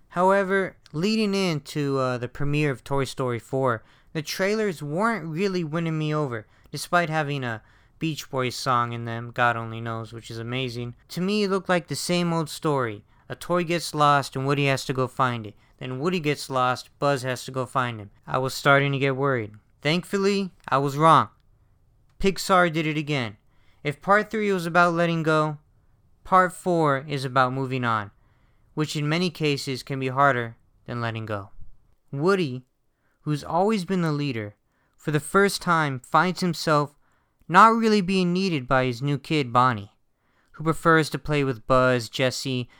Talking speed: 175 wpm